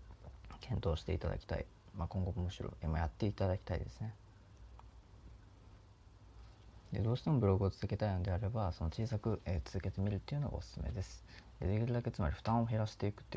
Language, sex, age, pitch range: Japanese, male, 20-39, 85-105 Hz